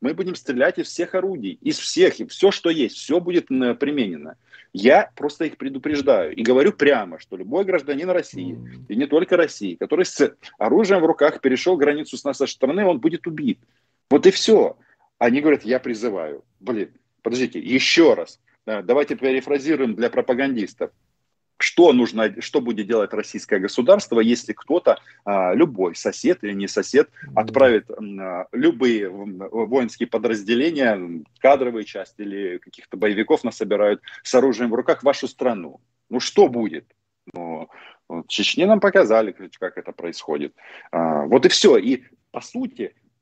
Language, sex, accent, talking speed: Russian, male, native, 145 wpm